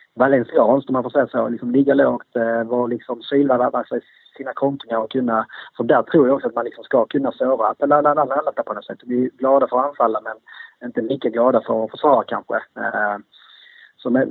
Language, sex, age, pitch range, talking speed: English, male, 30-49, 120-140 Hz, 195 wpm